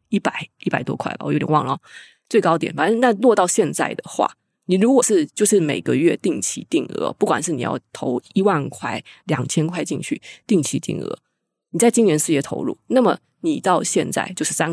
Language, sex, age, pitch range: Chinese, female, 20-39, 155-235 Hz